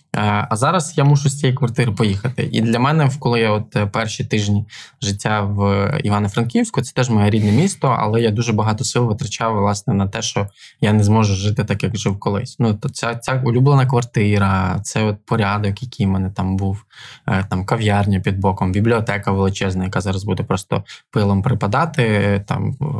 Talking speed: 175 wpm